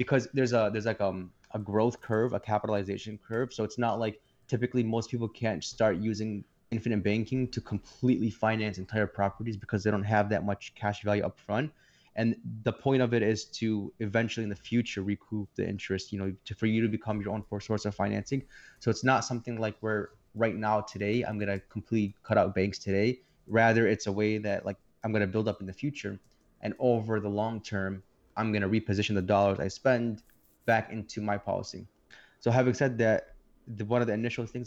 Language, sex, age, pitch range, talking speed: English, male, 20-39, 100-115 Hz, 210 wpm